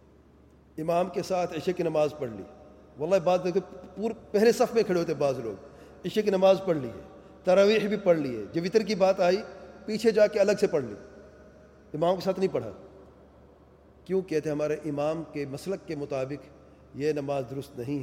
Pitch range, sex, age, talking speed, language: 140-190 Hz, male, 40-59, 185 wpm, English